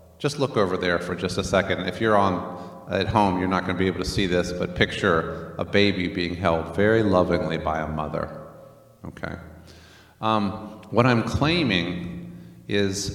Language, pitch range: English, 85-110 Hz